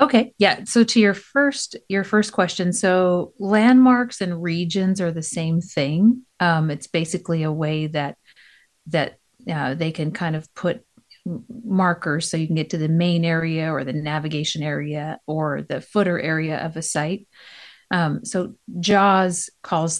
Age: 40-59